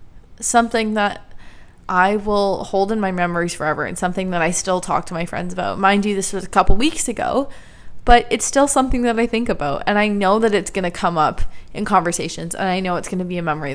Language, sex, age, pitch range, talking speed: English, female, 20-39, 185-235 Hz, 240 wpm